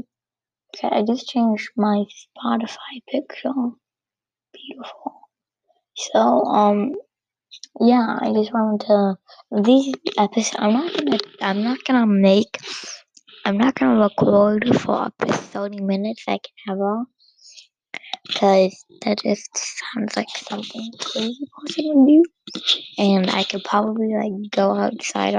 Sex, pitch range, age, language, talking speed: female, 200-250 Hz, 20-39, English, 125 wpm